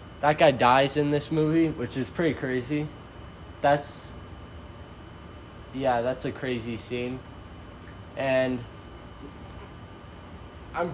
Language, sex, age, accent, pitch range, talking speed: English, male, 20-39, American, 115-155 Hz, 100 wpm